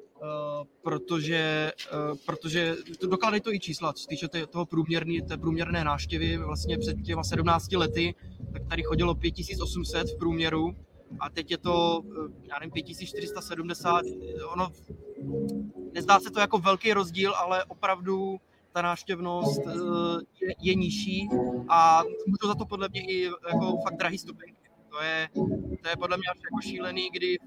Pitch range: 160-190 Hz